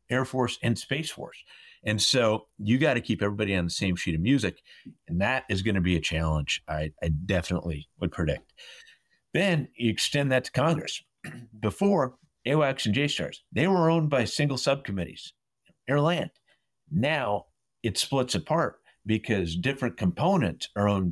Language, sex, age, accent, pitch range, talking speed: English, male, 50-69, American, 90-125 Hz, 165 wpm